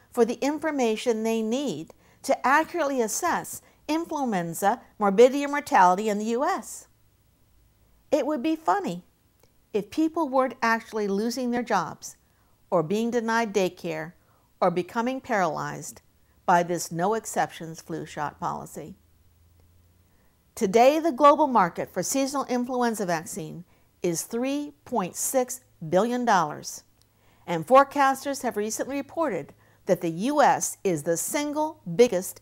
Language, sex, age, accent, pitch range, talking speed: English, female, 60-79, American, 175-255 Hz, 115 wpm